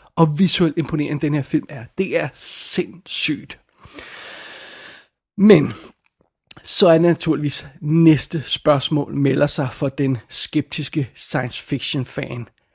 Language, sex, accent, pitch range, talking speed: Danish, male, native, 145-165 Hz, 120 wpm